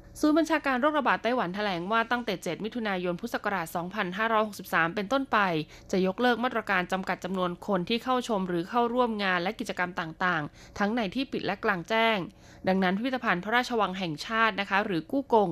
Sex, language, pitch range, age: female, Thai, 180-240 Hz, 20-39